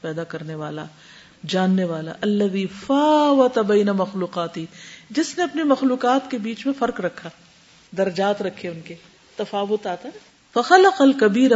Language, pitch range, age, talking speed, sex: Urdu, 180-255 Hz, 40-59, 125 wpm, female